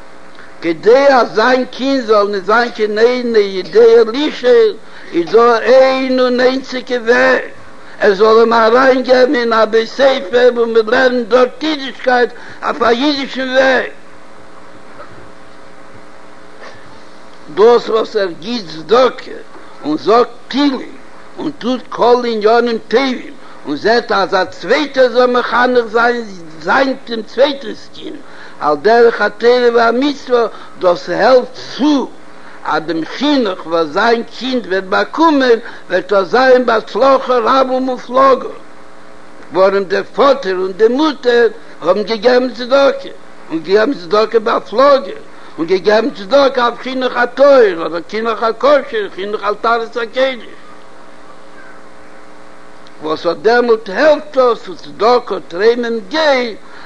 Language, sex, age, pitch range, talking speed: Hebrew, male, 60-79, 190-260 Hz, 80 wpm